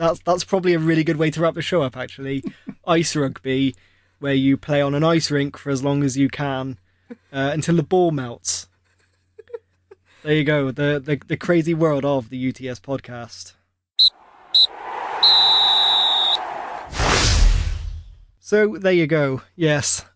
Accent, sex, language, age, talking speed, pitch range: British, male, English, 20-39, 150 wpm, 130-165 Hz